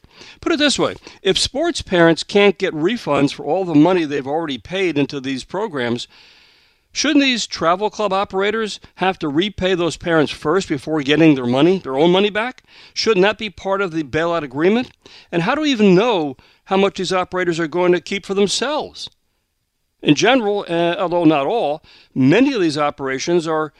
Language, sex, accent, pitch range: English, male, American, 155-205 Hz